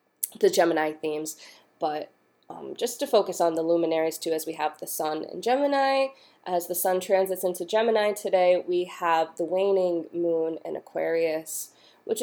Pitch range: 155-195 Hz